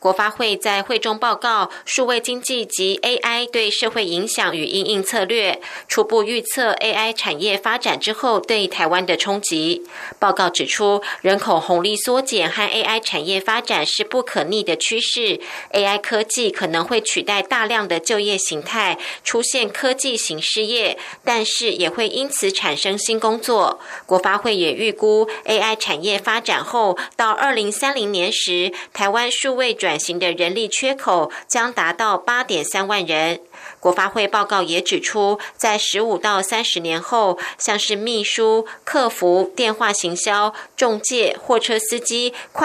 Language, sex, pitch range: German, female, 190-235 Hz